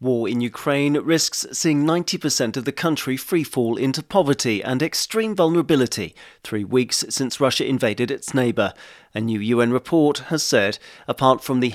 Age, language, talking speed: 40-59, English, 160 wpm